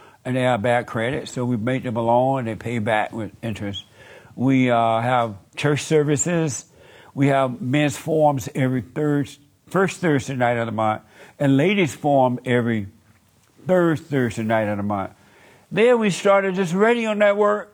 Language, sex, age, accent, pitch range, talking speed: English, male, 60-79, American, 120-150 Hz, 165 wpm